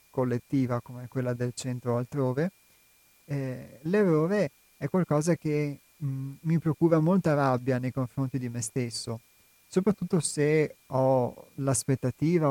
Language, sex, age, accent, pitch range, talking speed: Italian, male, 30-49, native, 130-155 Hz, 120 wpm